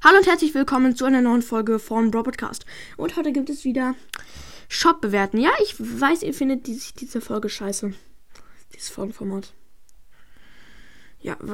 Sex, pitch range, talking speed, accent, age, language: female, 210-260 Hz, 145 wpm, German, 10-29, German